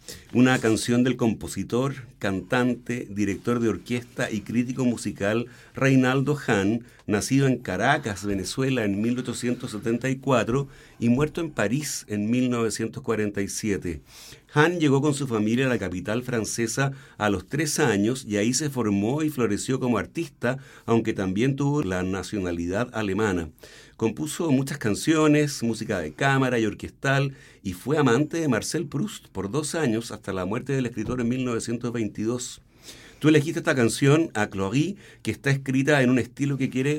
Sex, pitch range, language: male, 110-135 Hz, Spanish